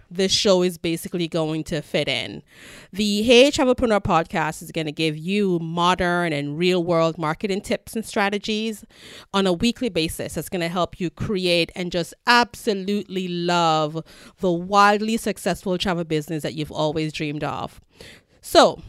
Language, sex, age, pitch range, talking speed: English, female, 30-49, 165-210 Hz, 160 wpm